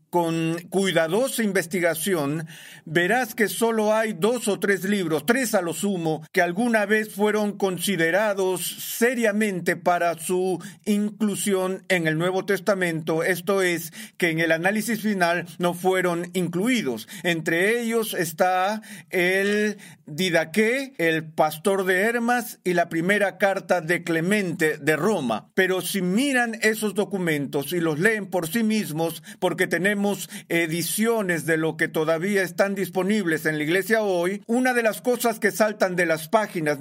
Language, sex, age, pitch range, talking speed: Spanish, male, 40-59, 170-215 Hz, 145 wpm